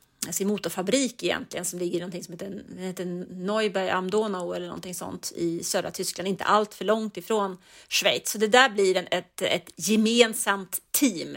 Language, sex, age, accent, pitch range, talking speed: English, female, 30-49, Swedish, 190-230 Hz, 175 wpm